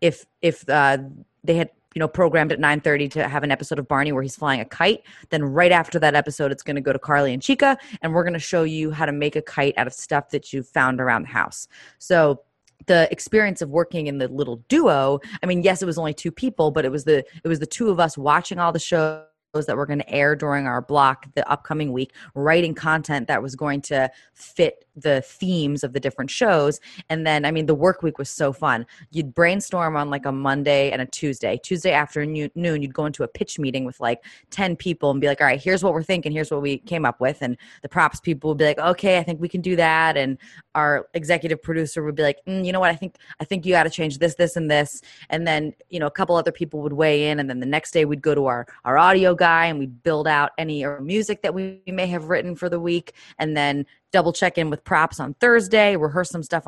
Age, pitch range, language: 20-39, 145-170 Hz, English